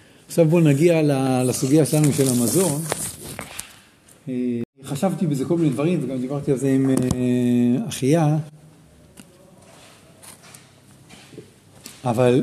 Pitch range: 135-180 Hz